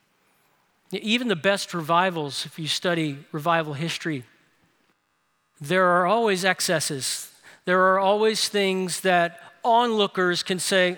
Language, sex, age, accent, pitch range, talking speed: English, male, 40-59, American, 175-215 Hz, 115 wpm